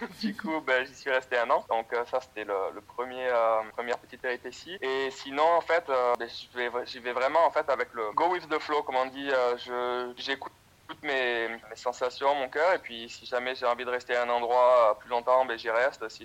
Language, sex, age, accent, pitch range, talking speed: French, male, 20-39, French, 120-135 Hz, 240 wpm